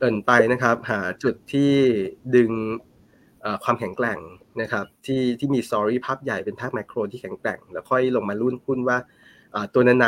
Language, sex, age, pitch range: Thai, male, 20-39, 115-135 Hz